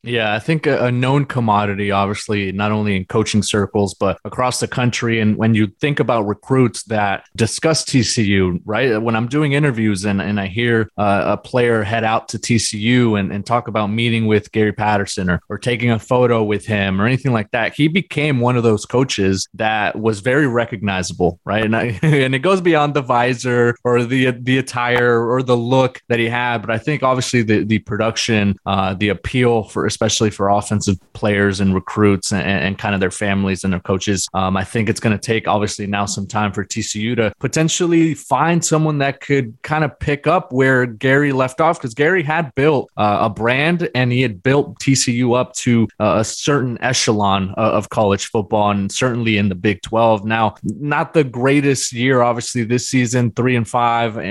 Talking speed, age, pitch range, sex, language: 200 wpm, 20-39, 105-125 Hz, male, English